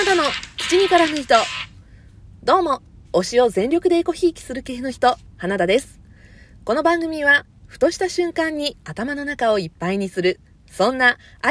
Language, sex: Japanese, female